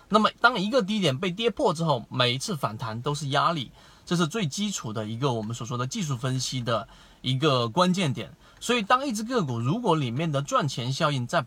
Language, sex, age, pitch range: Chinese, male, 30-49, 125-180 Hz